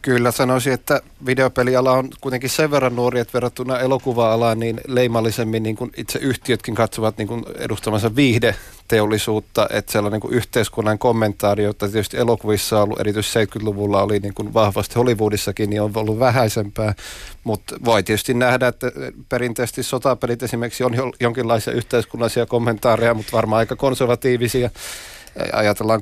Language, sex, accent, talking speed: Finnish, male, native, 135 wpm